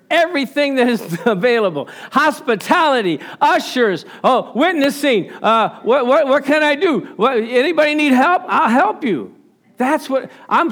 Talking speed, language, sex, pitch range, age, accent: 135 wpm, English, male, 185-280 Hz, 50-69, American